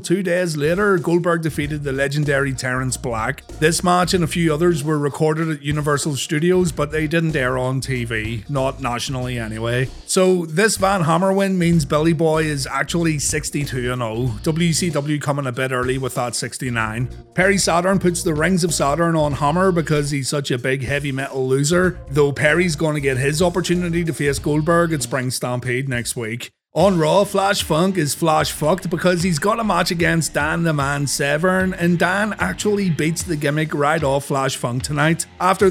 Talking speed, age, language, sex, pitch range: 180 wpm, 30-49, English, male, 135-175 Hz